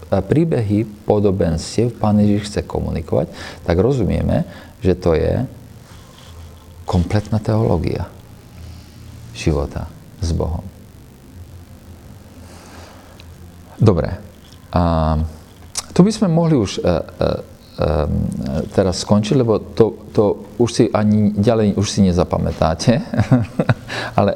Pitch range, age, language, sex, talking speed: 90-120 Hz, 40-59, Slovak, male, 80 wpm